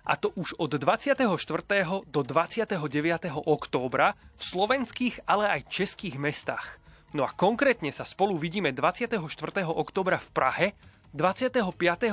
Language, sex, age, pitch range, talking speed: Slovak, male, 30-49, 145-195 Hz, 125 wpm